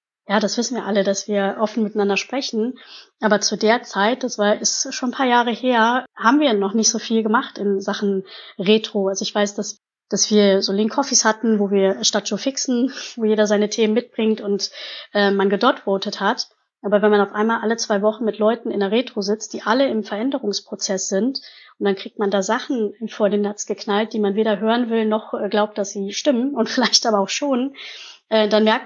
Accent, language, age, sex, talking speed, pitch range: German, German, 20-39, female, 215 wpm, 210-250 Hz